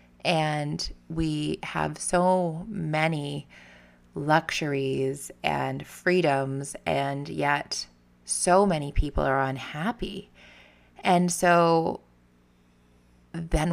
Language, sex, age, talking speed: English, female, 20-39, 80 wpm